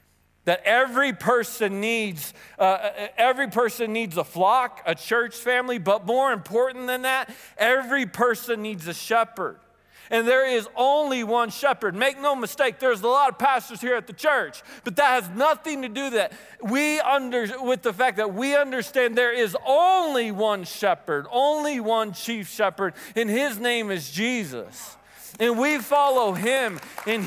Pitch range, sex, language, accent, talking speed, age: 165-245 Hz, male, English, American, 165 wpm, 40-59